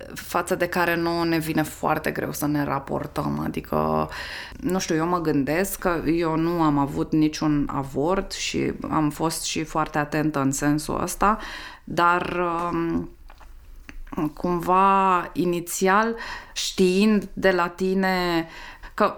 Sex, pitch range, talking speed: female, 170-250 Hz, 130 wpm